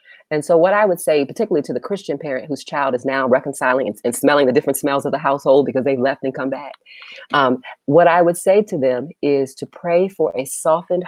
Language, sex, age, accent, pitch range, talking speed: English, female, 40-59, American, 140-195 Hz, 240 wpm